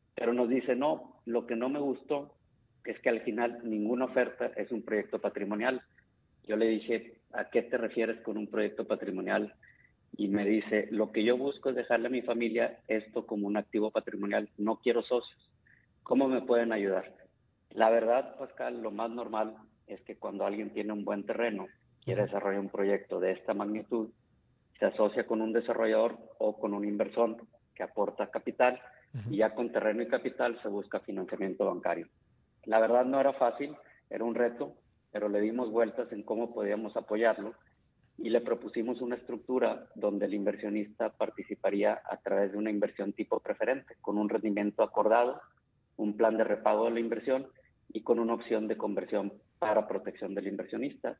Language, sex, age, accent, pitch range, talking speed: Spanish, male, 50-69, Mexican, 105-125 Hz, 175 wpm